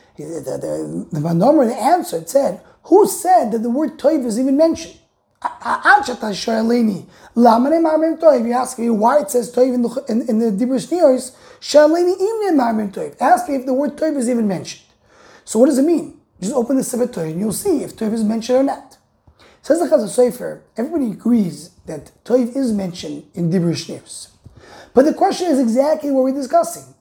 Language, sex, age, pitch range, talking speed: English, male, 30-49, 210-295 Hz, 170 wpm